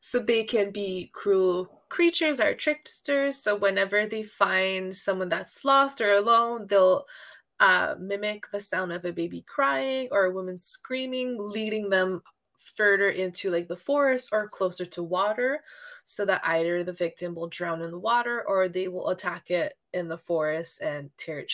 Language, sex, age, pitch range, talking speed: English, female, 20-39, 180-220 Hz, 175 wpm